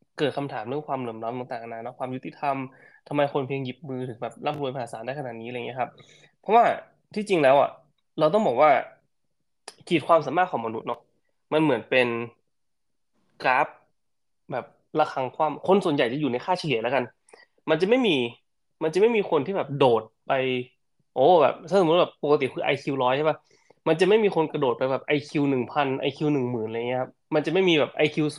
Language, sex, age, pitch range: Thai, male, 20-39, 120-155 Hz